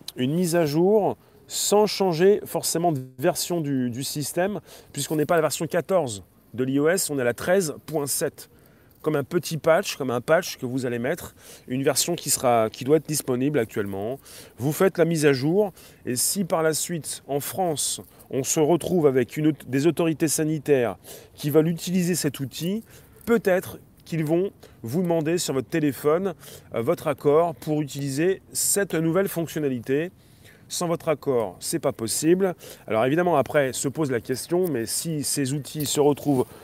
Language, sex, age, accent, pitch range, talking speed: French, male, 30-49, French, 130-170 Hz, 170 wpm